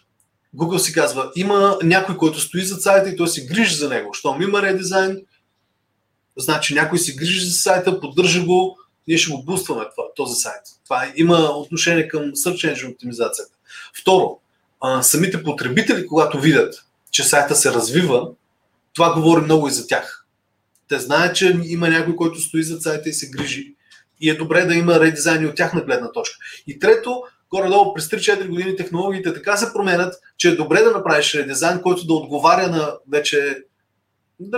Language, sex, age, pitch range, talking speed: Bulgarian, male, 30-49, 145-185 Hz, 175 wpm